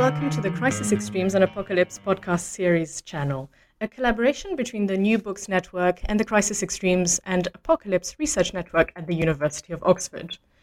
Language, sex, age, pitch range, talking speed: English, female, 30-49, 175-235 Hz, 170 wpm